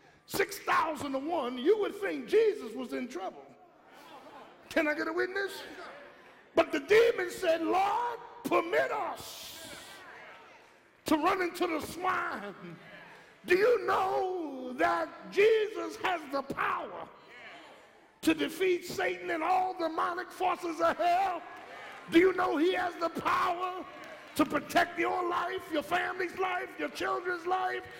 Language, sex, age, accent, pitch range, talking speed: English, male, 50-69, American, 325-375 Hz, 130 wpm